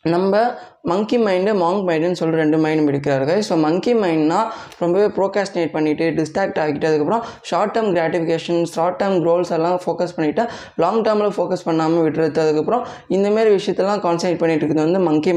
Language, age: Tamil, 20-39